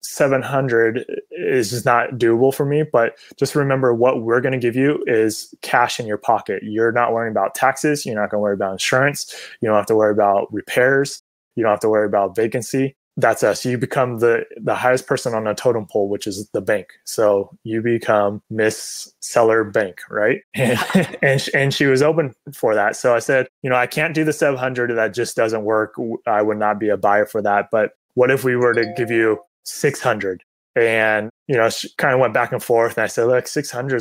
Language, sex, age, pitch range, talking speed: English, male, 20-39, 110-135 Hz, 220 wpm